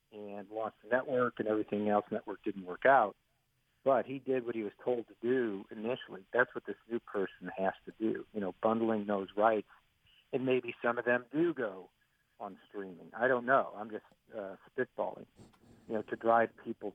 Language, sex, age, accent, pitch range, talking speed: English, male, 50-69, American, 105-125 Hz, 195 wpm